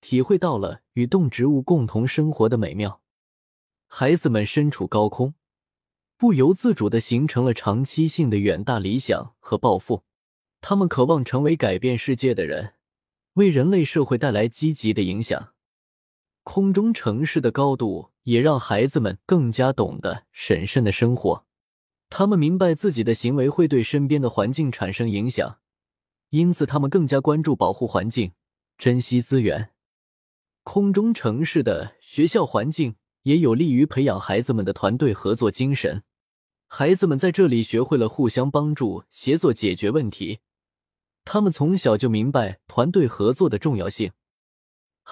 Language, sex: Chinese, male